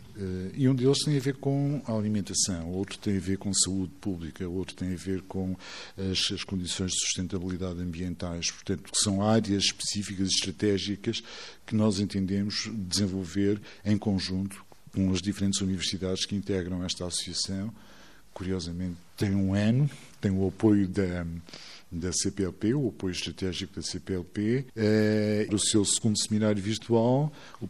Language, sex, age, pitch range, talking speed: Portuguese, male, 50-69, 95-110 Hz, 155 wpm